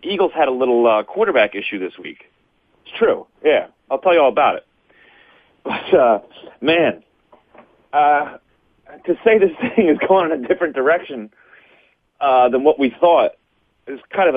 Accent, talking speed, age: American, 165 wpm, 40-59